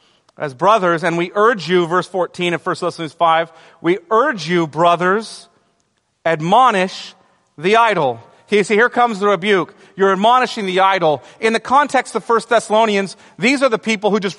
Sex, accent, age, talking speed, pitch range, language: male, American, 40-59, 170 wpm, 175-220 Hz, English